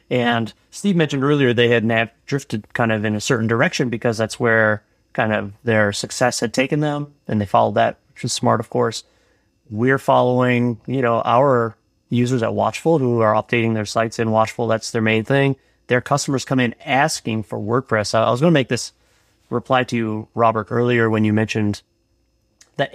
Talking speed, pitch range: 195 wpm, 110-130 Hz